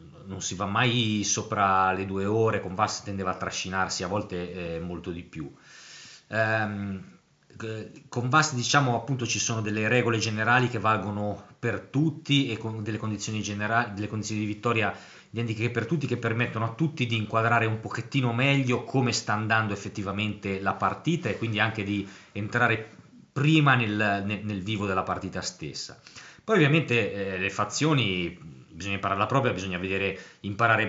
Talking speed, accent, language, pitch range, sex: 165 wpm, native, Italian, 95-115 Hz, male